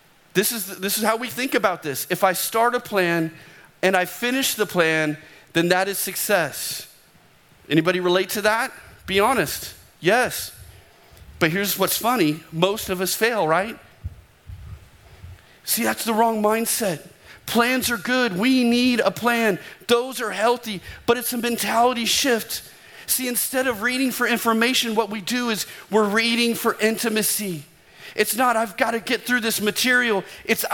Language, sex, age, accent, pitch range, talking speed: English, male, 40-59, American, 175-230 Hz, 160 wpm